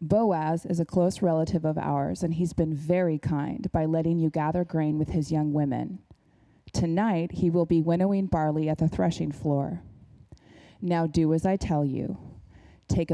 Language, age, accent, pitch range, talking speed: English, 20-39, American, 155-180 Hz, 175 wpm